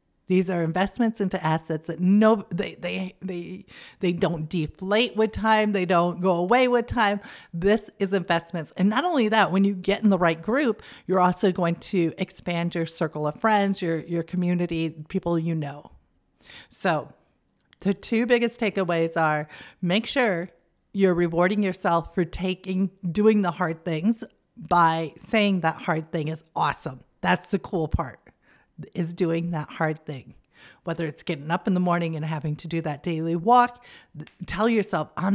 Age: 50-69